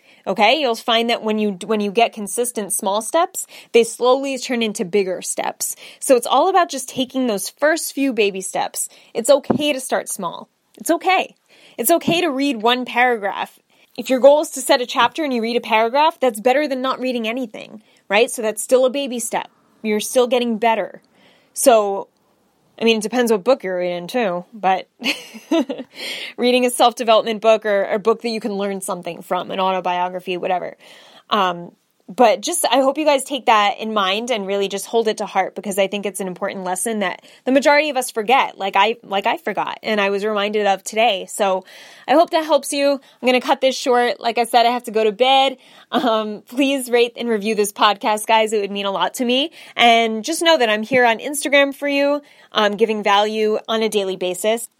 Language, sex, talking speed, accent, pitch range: English, female, 210 wpm, American, 205-260 Hz